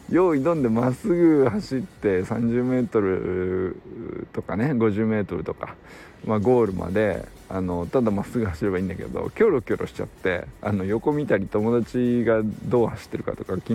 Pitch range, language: 100-150 Hz, Japanese